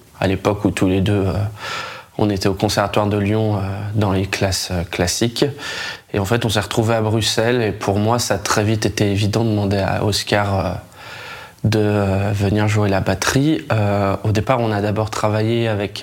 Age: 20-39